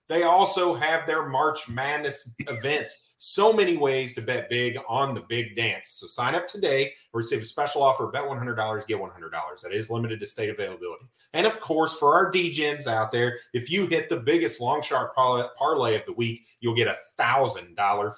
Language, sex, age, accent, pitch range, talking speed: English, male, 30-49, American, 115-160 Hz, 195 wpm